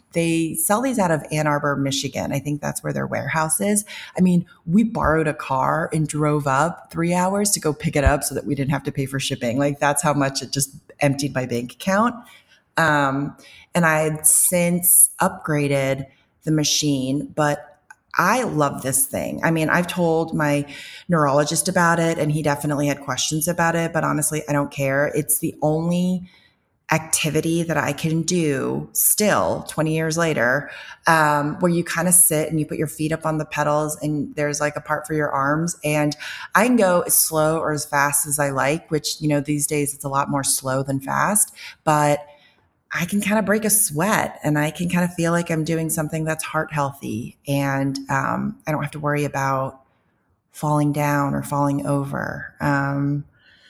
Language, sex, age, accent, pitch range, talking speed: English, female, 30-49, American, 145-165 Hz, 200 wpm